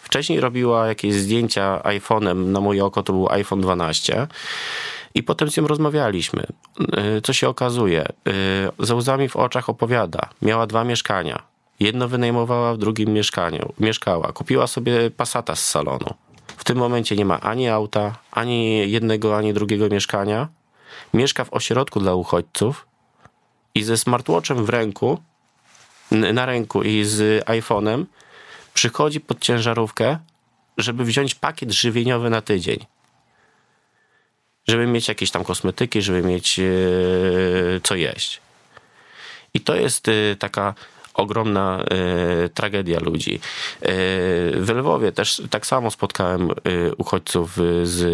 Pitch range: 95-120 Hz